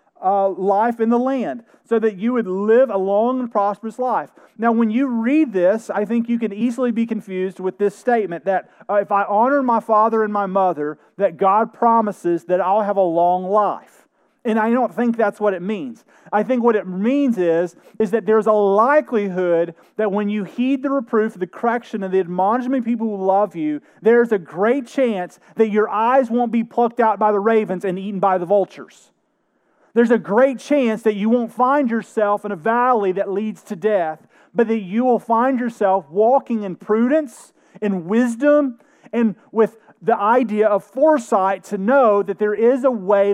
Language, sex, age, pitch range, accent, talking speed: English, male, 30-49, 195-235 Hz, American, 200 wpm